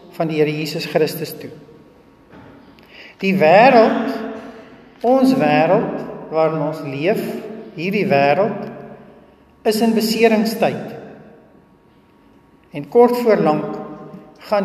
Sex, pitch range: male, 165-220 Hz